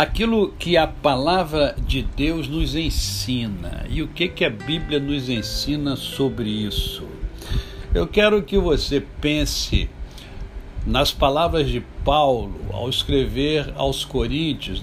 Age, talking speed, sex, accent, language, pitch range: 60-79, 125 wpm, male, Brazilian, Portuguese, 100-150 Hz